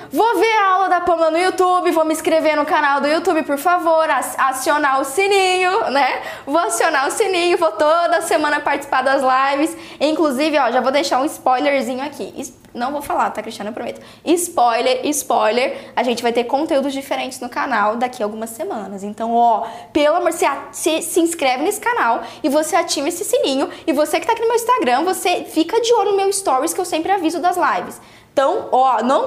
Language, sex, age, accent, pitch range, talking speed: Portuguese, female, 10-29, Brazilian, 280-355 Hz, 205 wpm